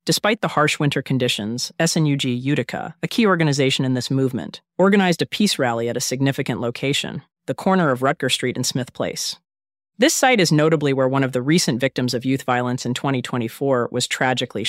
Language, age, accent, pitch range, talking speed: English, 30-49, American, 125-155 Hz, 190 wpm